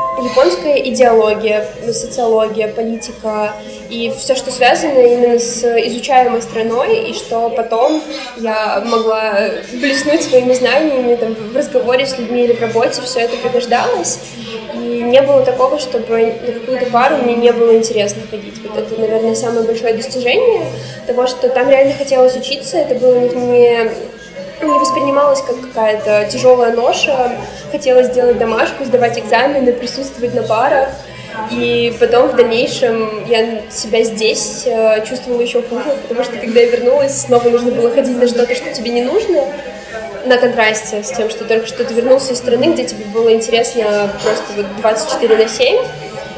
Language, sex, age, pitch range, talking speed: Russian, female, 20-39, 230-260 Hz, 150 wpm